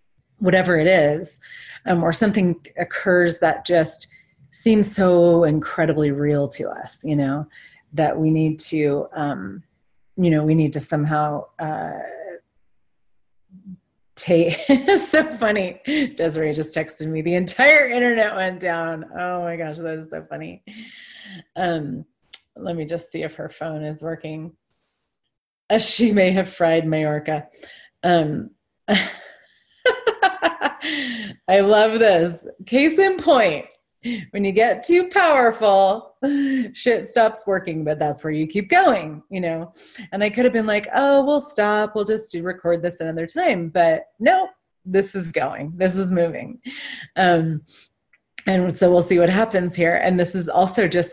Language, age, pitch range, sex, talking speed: English, 30-49, 165-235 Hz, female, 145 wpm